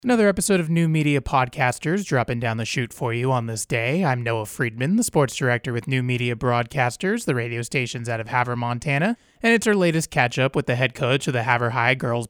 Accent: American